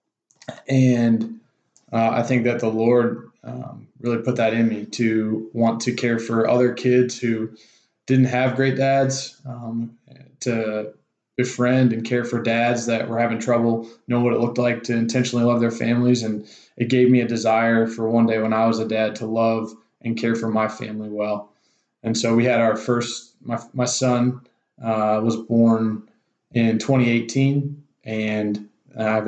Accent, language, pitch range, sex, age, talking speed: American, English, 110-125 Hz, male, 20-39, 175 wpm